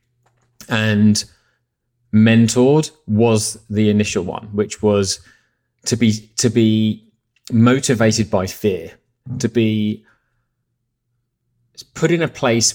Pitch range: 105-125 Hz